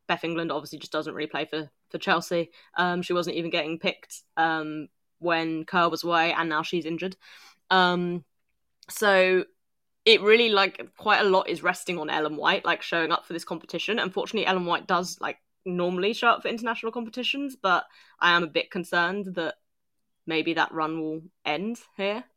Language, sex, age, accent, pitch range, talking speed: English, female, 20-39, British, 160-185 Hz, 180 wpm